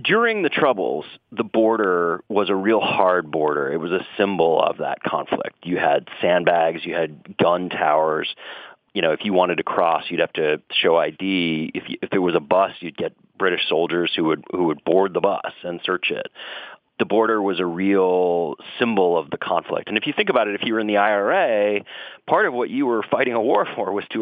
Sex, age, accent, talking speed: male, 40-59, American, 215 wpm